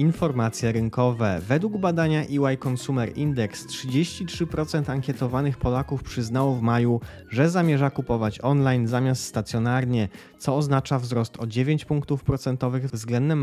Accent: native